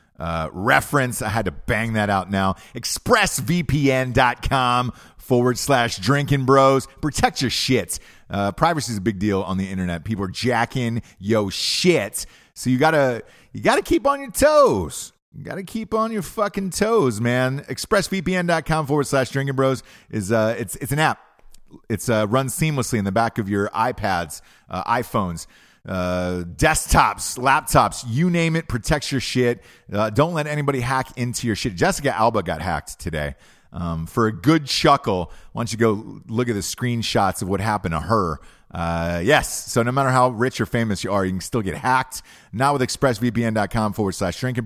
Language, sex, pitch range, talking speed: English, male, 100-130 Hz, 180 wpm